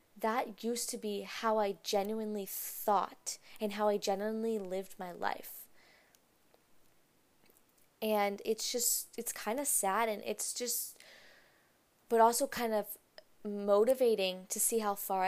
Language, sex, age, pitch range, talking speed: English, female, 10-29, 200-235 Hz, 135 wpm